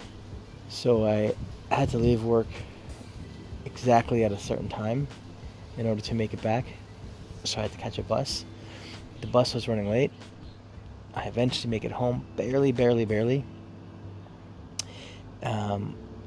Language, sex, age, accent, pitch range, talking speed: English, male, 20-39, American, 105-115 Hz, 140 wpm